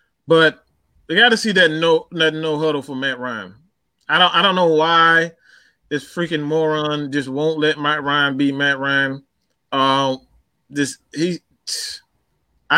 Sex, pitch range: male, 140-170 Hz